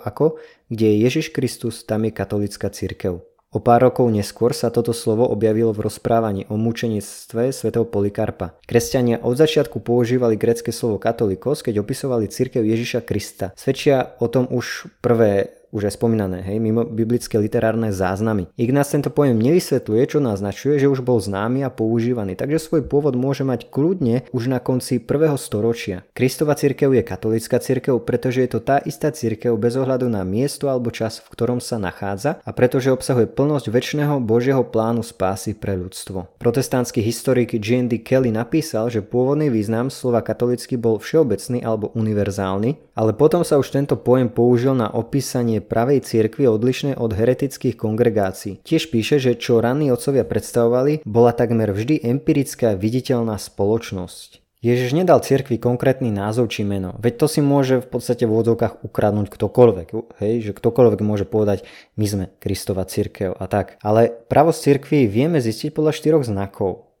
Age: 20-39